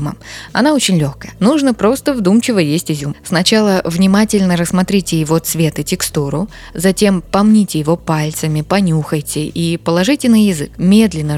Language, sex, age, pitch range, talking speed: Russian, female, 20-39, 155-195 Hz, 130 wpm